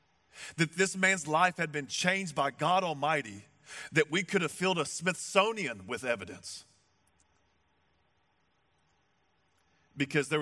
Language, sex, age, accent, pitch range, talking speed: English, male, 40-59, American, 135-175 Hz, 120 wpm